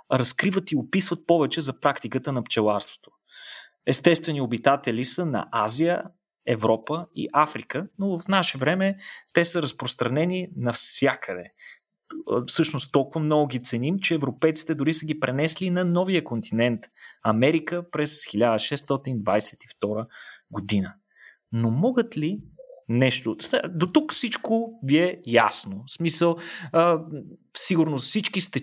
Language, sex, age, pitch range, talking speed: Bulgarian, male, 30-49, 120-170 Hz, 120 wpm